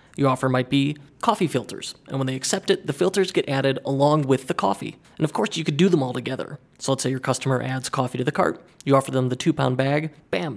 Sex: male